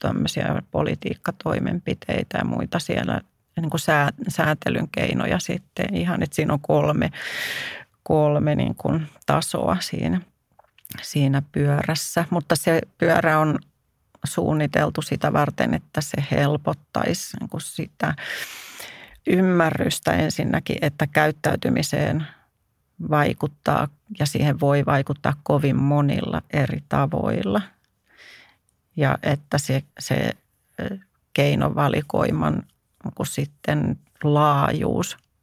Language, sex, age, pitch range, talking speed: Finnish, female, 40-59, 135-160 Hz, 95 wpm